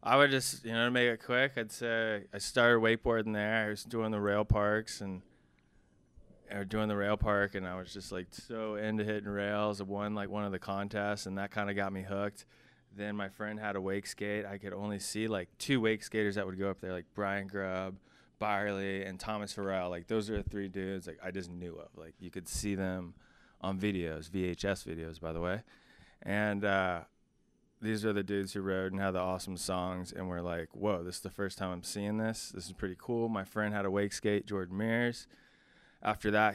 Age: 20-39